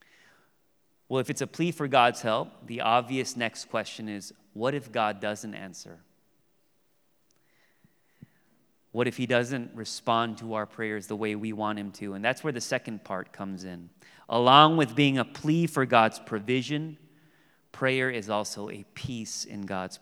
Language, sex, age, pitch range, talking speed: English, male, 30-49, 110-150 Hz, 165 wpm